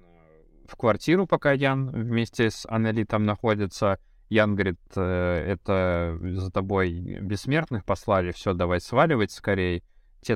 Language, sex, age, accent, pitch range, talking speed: Russian, male, 20-39, native, 95-130 Hz, 115 wpm